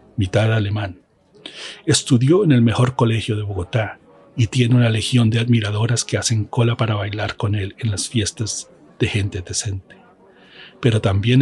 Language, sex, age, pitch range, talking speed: Spanish, male, 40-59, 105-125 Hz, 160 wpm